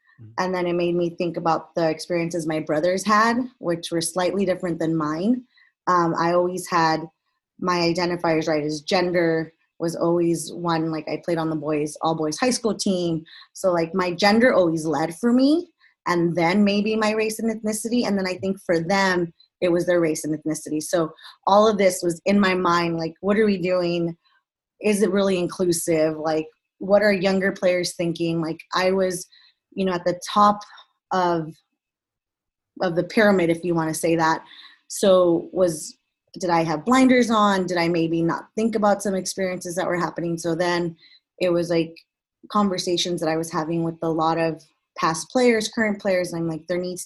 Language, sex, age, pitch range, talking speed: English, female, 20-39, 165-195 Hz, 195 wpm